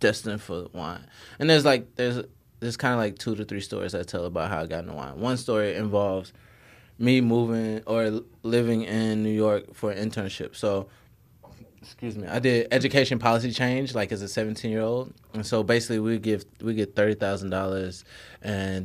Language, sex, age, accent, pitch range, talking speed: English, male, 20-39, American, 95-115 Hz, 195 wpm